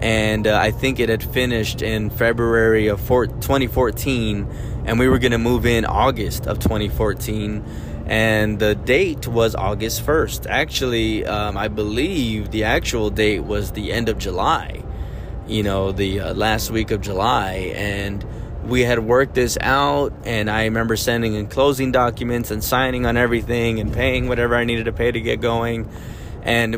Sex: male